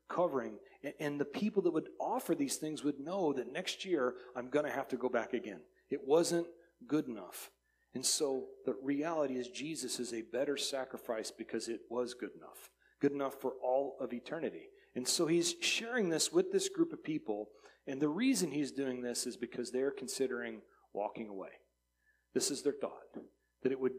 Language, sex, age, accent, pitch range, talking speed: English, male, 40-59, American, 125-155 Hz, 190 wpm